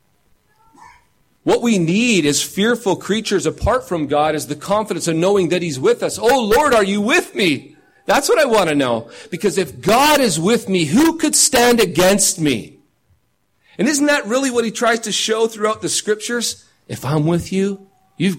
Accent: American